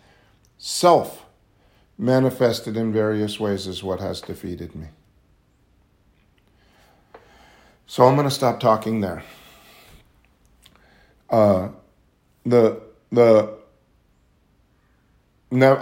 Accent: American